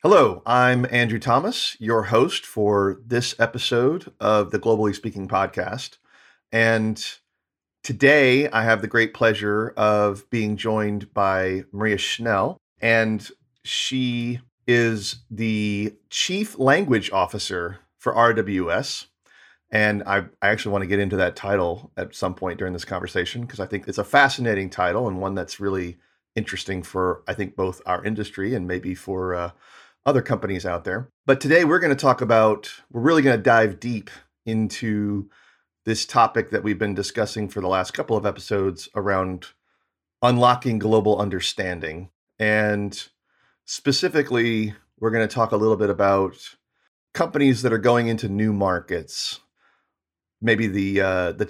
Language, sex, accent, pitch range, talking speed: English, male, American, 100-115 Hz, 150 wpm